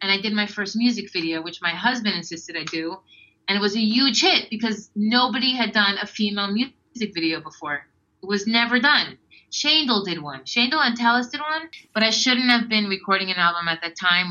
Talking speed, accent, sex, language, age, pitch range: 215 wpm, American, female, English, 30-49, 170-220 Hz